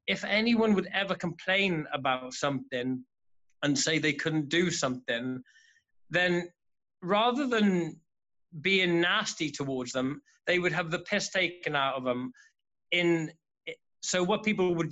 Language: English